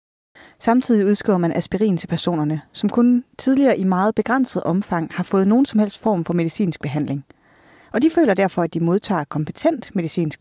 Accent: native